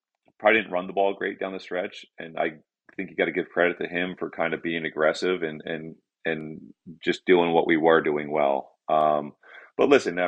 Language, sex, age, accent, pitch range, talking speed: English, male, 30-49, American, 80-90 Hz, 220 wpm